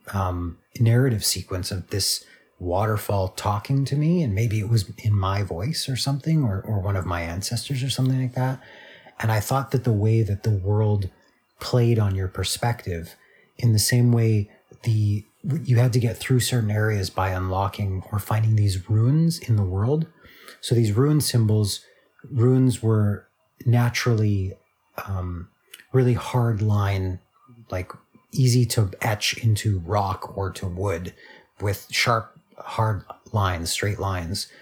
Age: 30-49